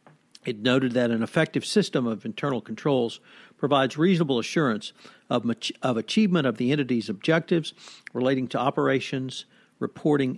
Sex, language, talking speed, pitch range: male, English, 135 wpm, 130-160 Hz